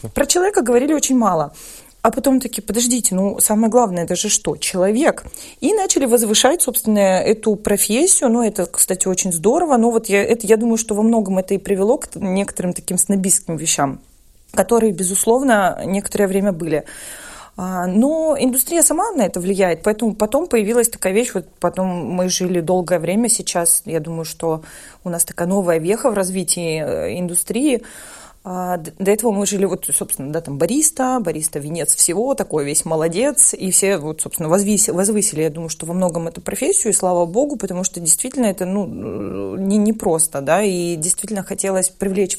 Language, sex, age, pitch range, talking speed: Russian, female, 30-49, 175-225 Hz, 170 wpm